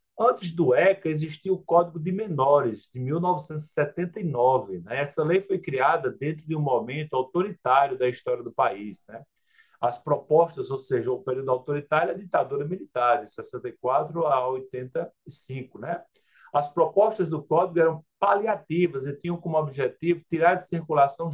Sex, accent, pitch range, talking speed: male, Brazilian, 130-170 Hz, 150 wpm